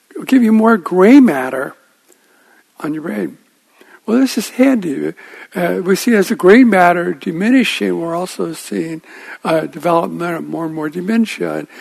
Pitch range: 170-260 Hz